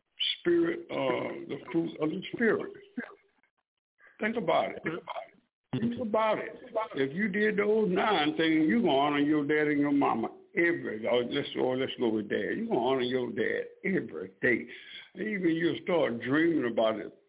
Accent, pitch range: American, 150-215 Hz